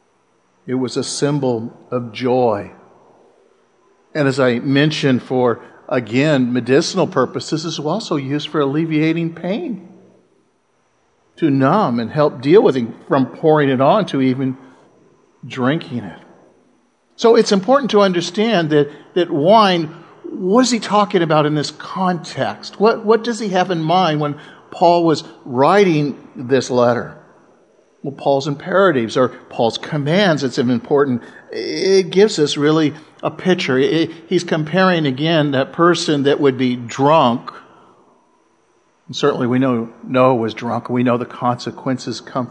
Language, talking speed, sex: English, 145 wpm, male